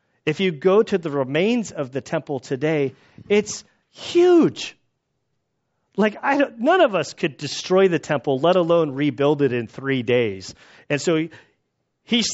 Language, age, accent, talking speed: English, 40-59, American, 160 wpm